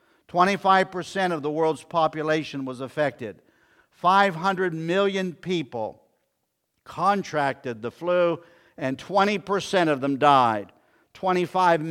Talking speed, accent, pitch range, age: 90 wpm, American, 150-200 Hz, 50-69